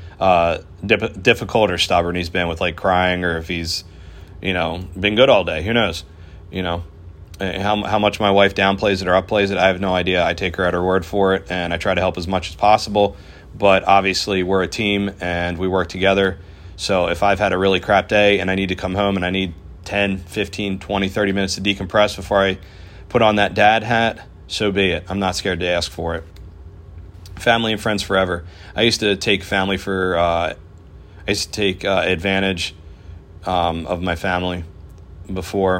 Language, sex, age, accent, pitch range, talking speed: English, male, 30-49, American, 85-100 Hz, 210 wpm